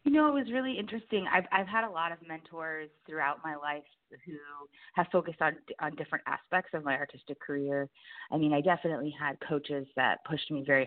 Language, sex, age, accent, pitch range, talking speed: English, female, 20-39, American, 145-190 Hz, 205 wpm